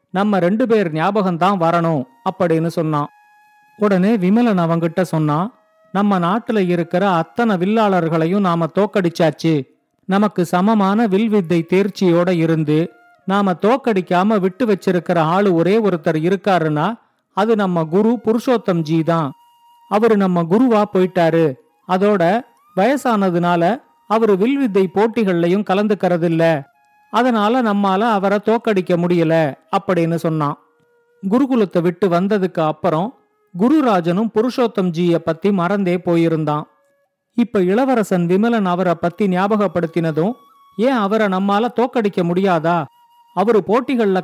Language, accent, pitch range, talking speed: Tamil, native, 170-220 Hz, 95 wpm